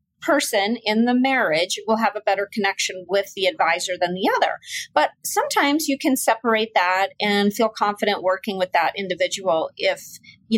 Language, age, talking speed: English, 30-49, 170 wpm